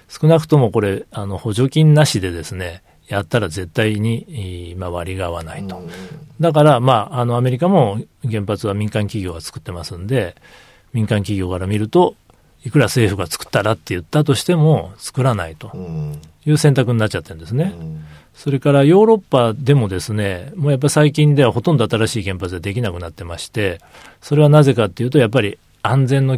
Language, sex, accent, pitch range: Japanese, male, native, 95-140 Hz